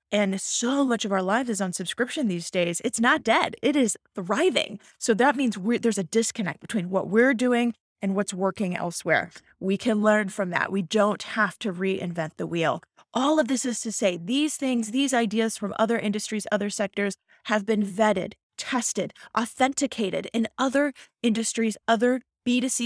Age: 30-49